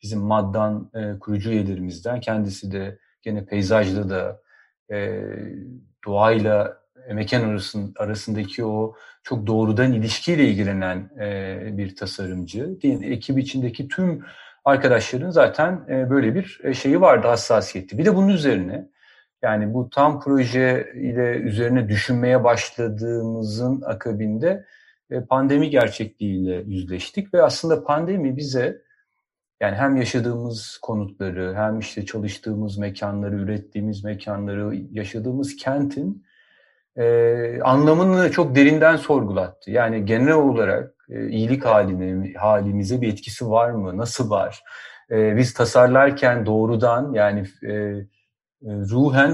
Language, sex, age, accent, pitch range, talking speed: Turkish, male, 40-59, native, 105-130 Hz, 110 wpm